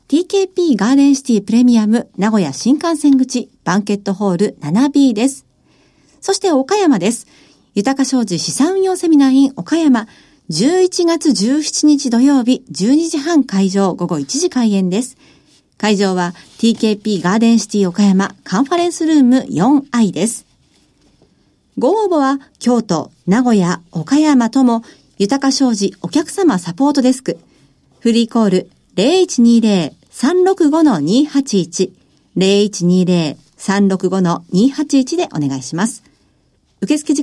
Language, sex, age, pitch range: Japanese, female, 50-69, 195-300 Hz